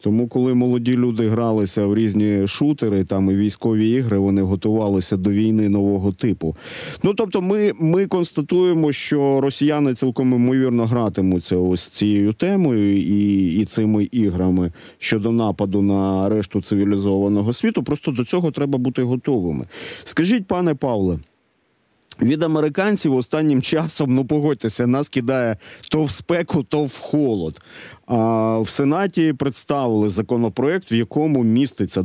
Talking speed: 135 wpm